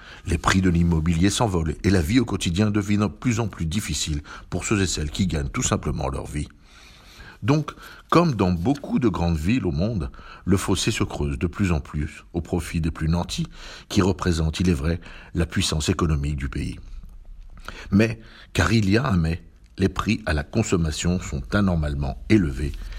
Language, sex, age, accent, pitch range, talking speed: French, male, 60-79, French, 80-105 Hz, 190 wpm